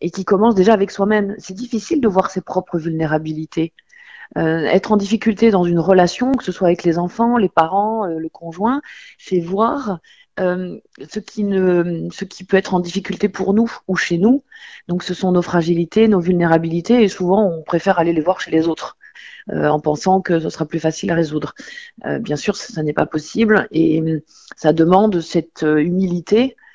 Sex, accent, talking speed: female, French, 195 wpm